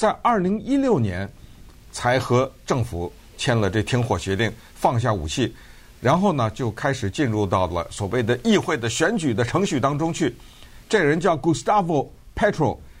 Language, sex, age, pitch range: Chinese, male, 50-69, 115-175 Hz